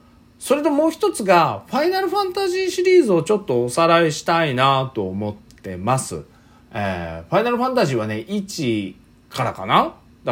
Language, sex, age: Japanese, male, 40-59